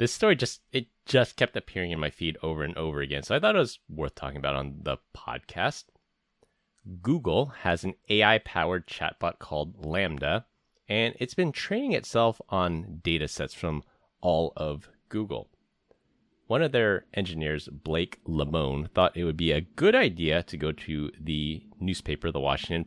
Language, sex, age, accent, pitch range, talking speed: English, male, 30-49, American, 75-95 Hz, 170 wpm